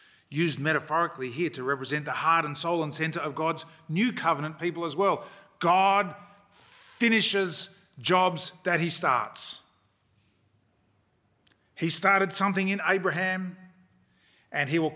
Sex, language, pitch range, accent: male, English, 130-180 Hz, Australian